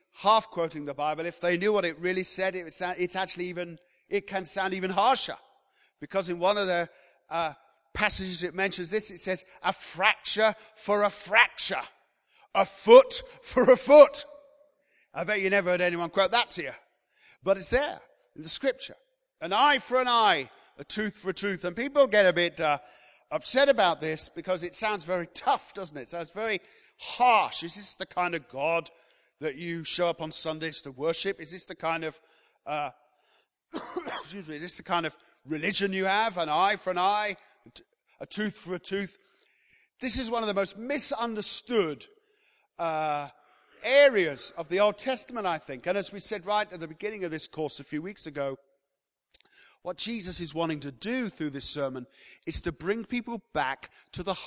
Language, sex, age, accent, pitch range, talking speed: English, male, 40-59, British, 165-215 Hz, 190 wpm